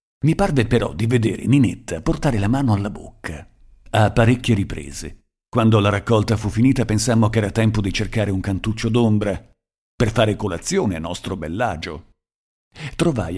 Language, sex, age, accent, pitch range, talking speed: Italian, male, 50-69, native, 95-115 Hz, 155 wpm